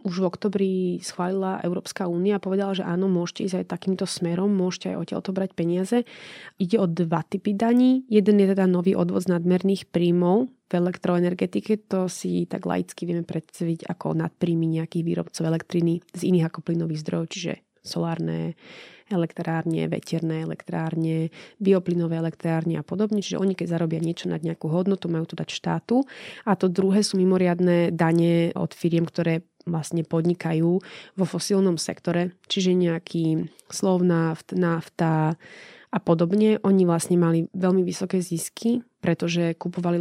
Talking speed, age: 150 wpm, 20-39